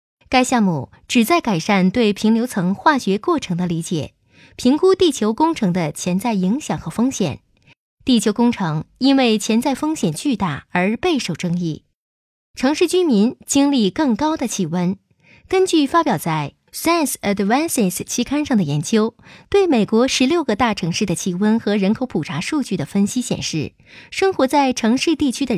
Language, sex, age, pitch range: Chinese, female, 20-39, 185-275 Hz